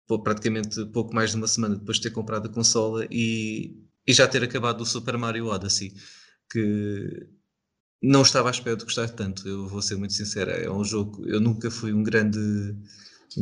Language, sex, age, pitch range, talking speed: Portuguese, male, 20-39, 105-120 Hz, 190 wpm